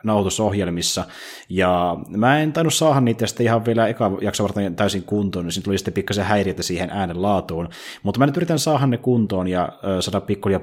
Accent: native